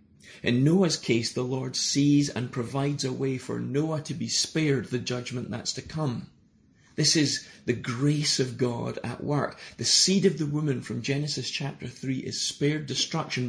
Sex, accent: male, British